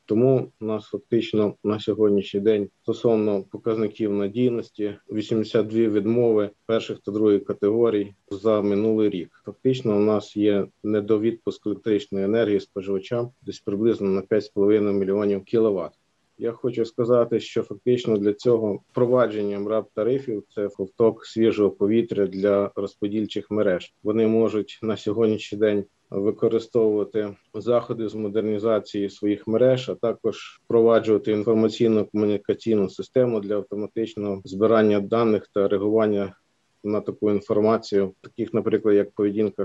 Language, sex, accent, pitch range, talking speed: Ukrainian, male, native, 100-115 Hz, 120 wpm